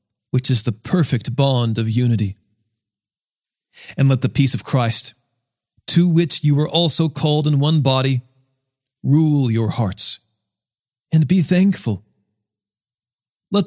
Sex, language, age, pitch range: male, English, 40-59, 115-155 Hz